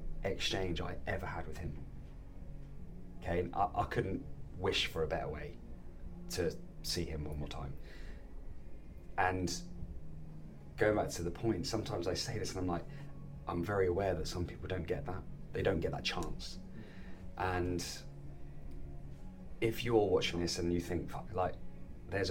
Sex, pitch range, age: male, 75-90 Hz, 30-49